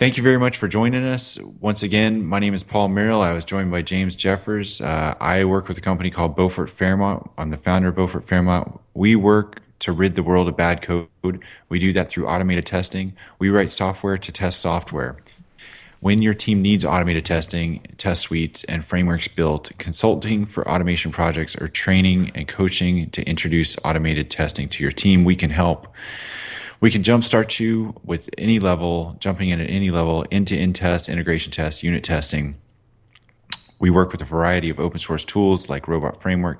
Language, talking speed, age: English, 190 wpm, 20-39